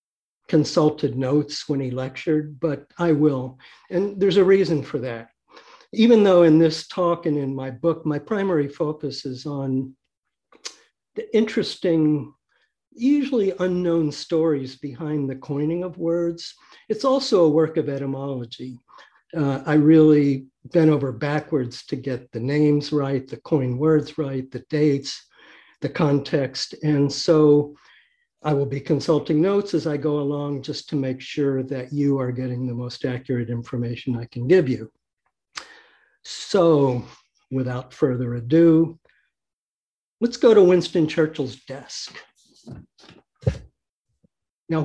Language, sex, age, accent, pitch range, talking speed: English, male, 60-79, American, 135-170 Hz, 135 wpm